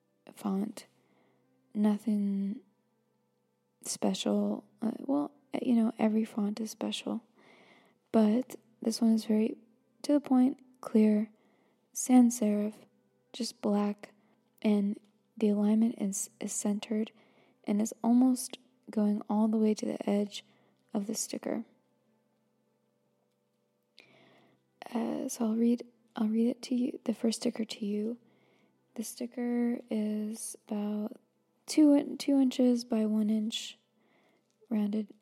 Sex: female